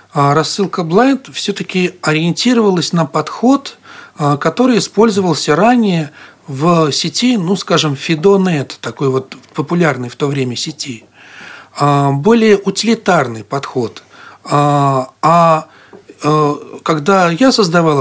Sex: male